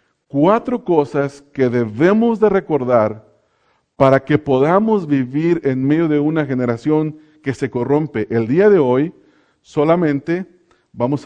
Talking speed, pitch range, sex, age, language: 130 wpm, 140-190 Hz, male, 40-59, English